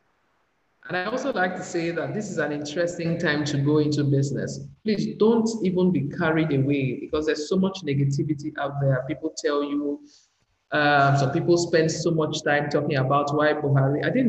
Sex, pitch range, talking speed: male, 140-175 Hz, 190 wpm